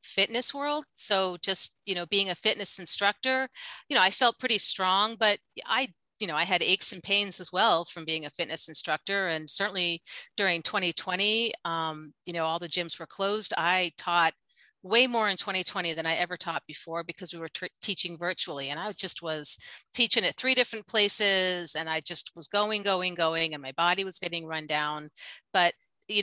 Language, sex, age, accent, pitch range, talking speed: English, female, 40-59, American, 165-210 Hz, 195 wpm